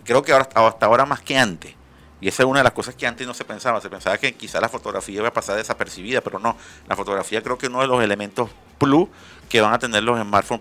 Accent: Venezuelan